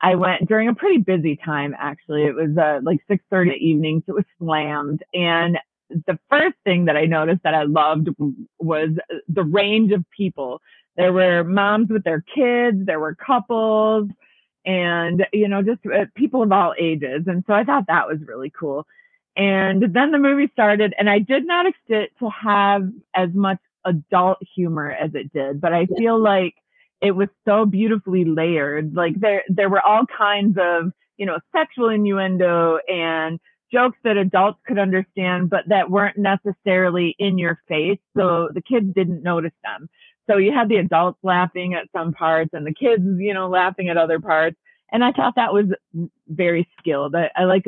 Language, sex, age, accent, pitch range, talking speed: English, female, 30-49, American, 160-205 Hz, 180 wpm